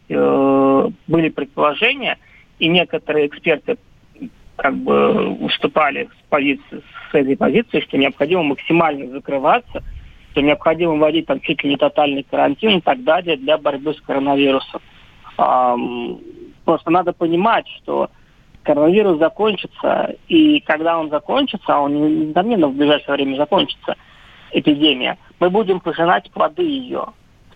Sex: male